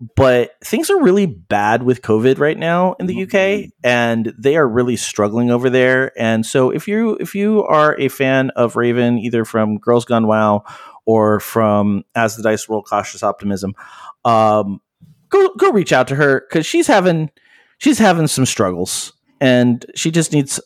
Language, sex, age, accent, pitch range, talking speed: English, male, 30-49, American, 115-170 Hz, 175 wpm